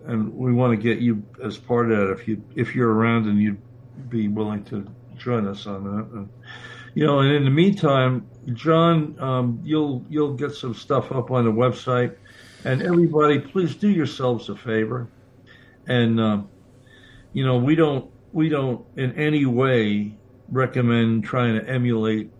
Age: 60-79